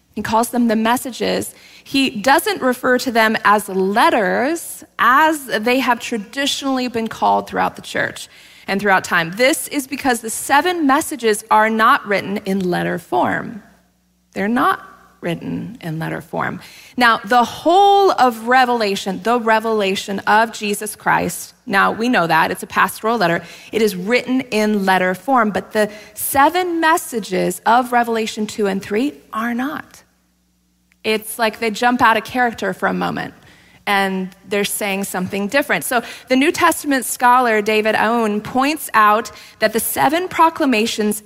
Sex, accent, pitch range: female, American, 200-260 Hz